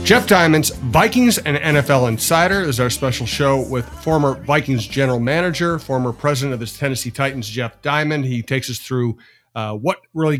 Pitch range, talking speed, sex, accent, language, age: 125-150 Hz, 175 wpm, male, American, English, 50-69